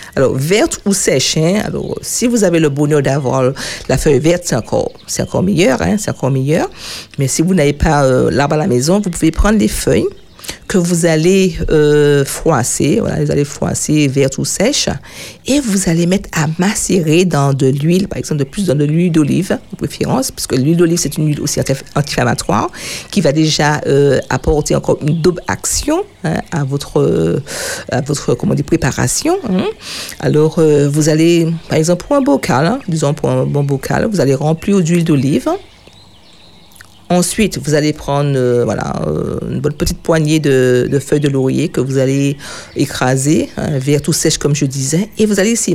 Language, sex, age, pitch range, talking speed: French, female, 50-69, 140-180 Hz, 195 wpm